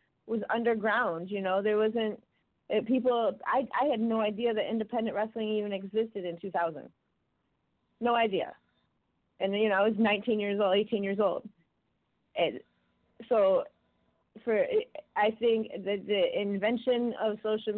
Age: 30-49